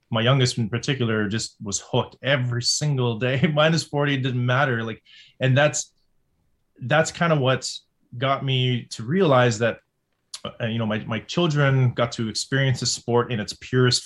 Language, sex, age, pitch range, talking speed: English, male, 20-39, 115-130 Hz, 180 wpm